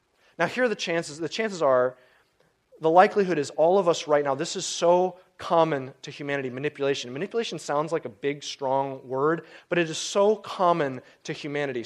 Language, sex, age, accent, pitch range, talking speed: English, male, 30-49, American, 140-185 Hz, 185 wpm